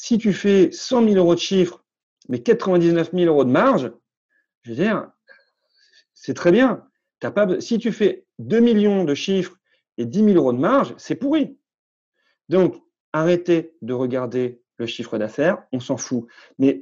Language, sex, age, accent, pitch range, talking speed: French, male, 40-59, French, 130-200 Hz, 170 wpm